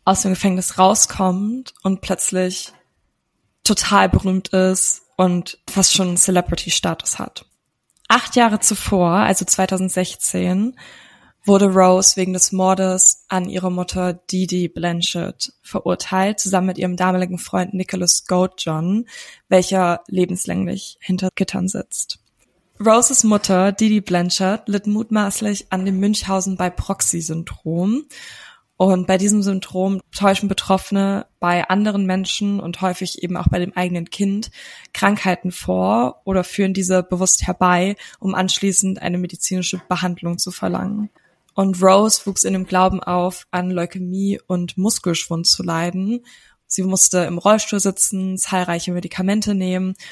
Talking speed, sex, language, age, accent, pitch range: 125 wpm, female, German, 20-39, German, 180-195 Hz